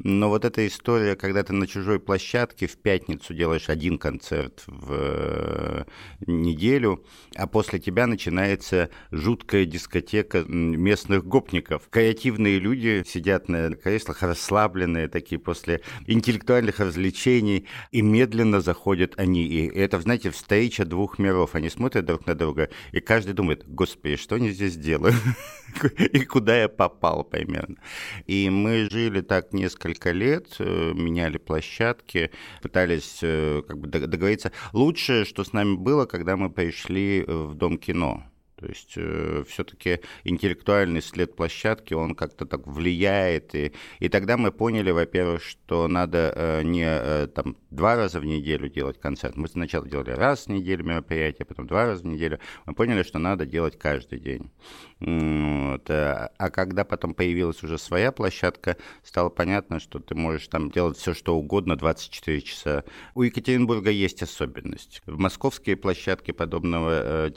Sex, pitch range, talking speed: male, 80-100 Hz, 145 wpm